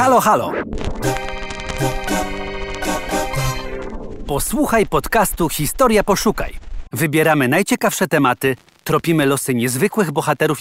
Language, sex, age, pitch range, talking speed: Polish, male, 40-59, 115-160 Hz, 75 wpm